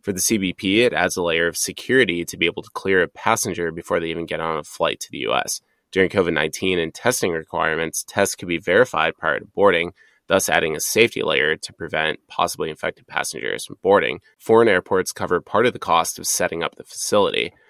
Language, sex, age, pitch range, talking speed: English, male, 20-39, 85-110 Hz, 210 wpm